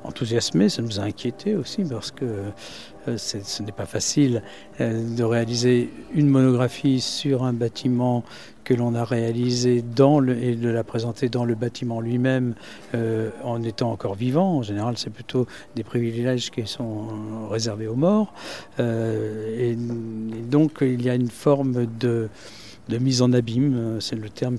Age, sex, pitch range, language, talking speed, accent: 60-79, male, 110-130 Hz, French, 165 wpm, French